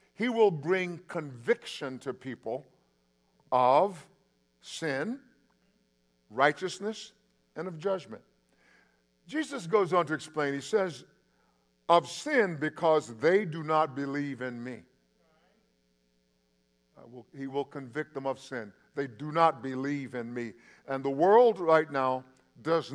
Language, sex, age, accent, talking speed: English, male, 50-69, American, 120 wpm